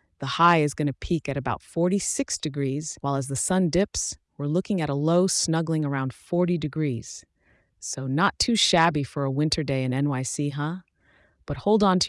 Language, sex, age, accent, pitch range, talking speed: English, female, 30-49, American, 135-170 Hz, 195 wpm